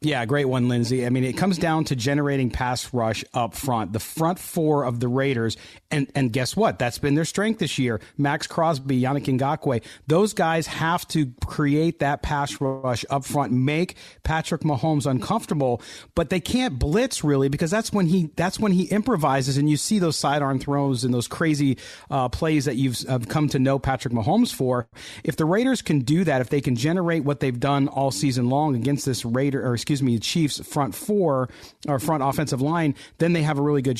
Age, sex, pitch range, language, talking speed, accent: 40-59, male, 130-160 Hz, English, 205 wpm, American